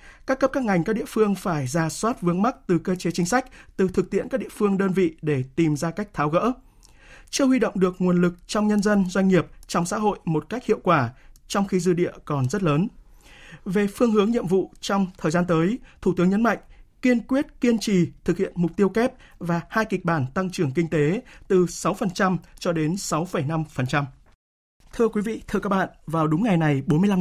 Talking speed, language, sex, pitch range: 225 wpm, Vietnamese, male, 160-210 Hz